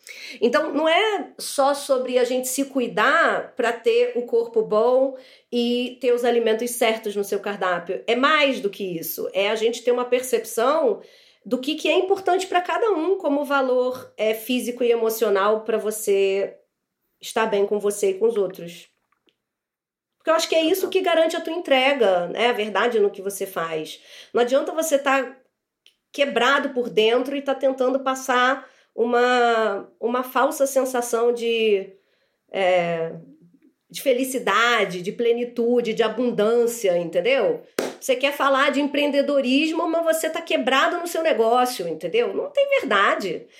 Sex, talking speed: female, 160 wpm